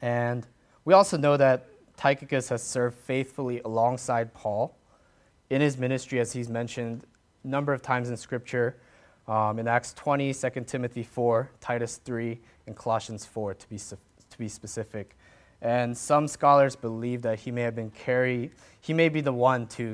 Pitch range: 115-135 Hz